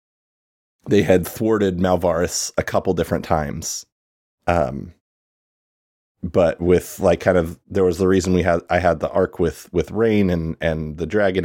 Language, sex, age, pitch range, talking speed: English, male, 30-49, 80-100 Hz, 160 wpm